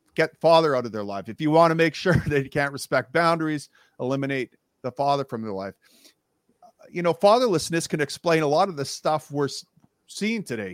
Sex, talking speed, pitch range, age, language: male, 195 wpm, 120-150 Hz, 40-59, English